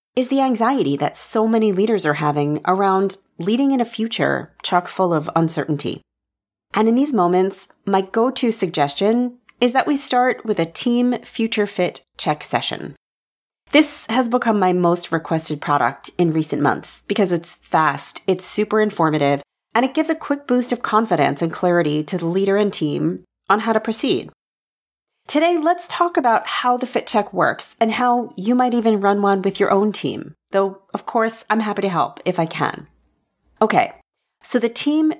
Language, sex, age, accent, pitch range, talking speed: English, female, 30-49, American, 175-245 Hz, 180 wpm